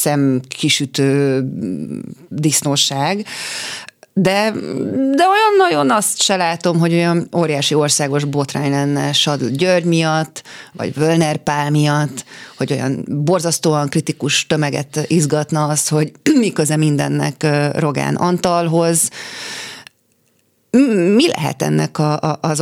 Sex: female